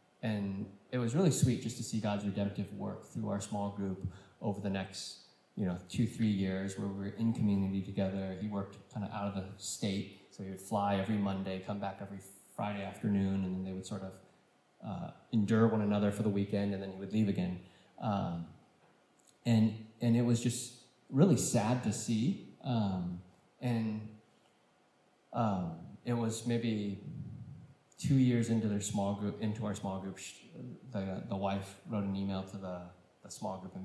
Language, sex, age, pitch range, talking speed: English, male, 20-39, 95-110 Hz, 185 wpm